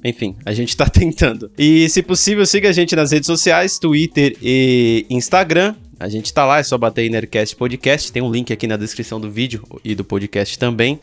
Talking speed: 205 wpm